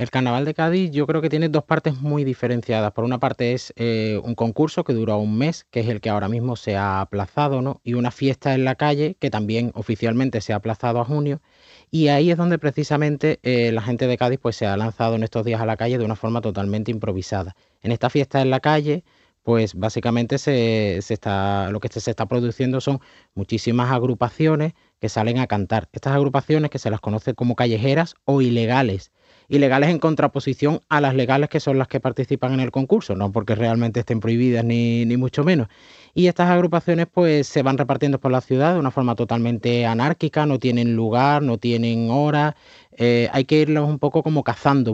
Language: Spanish